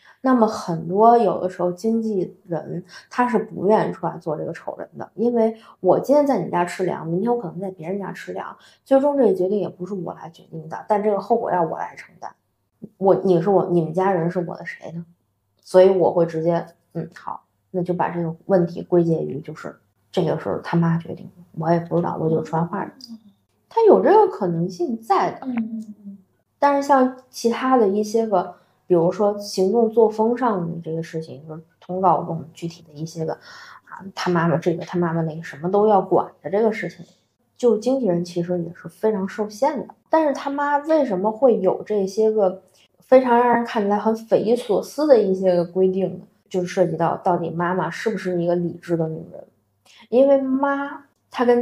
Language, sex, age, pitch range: Chinese, female, 20-39, 175-225 Hz